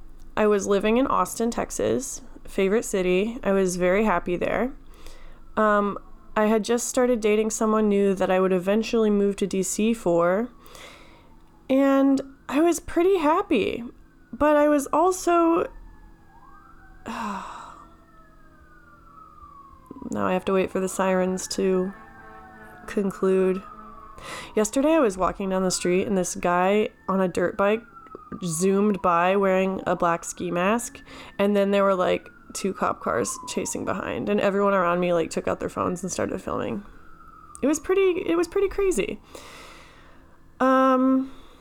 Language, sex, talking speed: English, female, 145 wpm